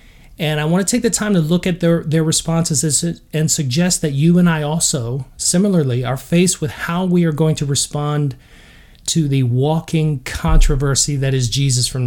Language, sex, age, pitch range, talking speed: English, male, 40-59, 140-170 Hz, 190 wpm